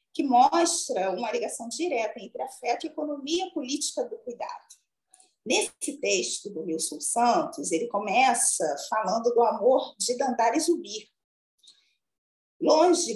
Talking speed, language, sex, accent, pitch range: 125 wpm, Portuguese, female, Brazilian, 200-330 Hz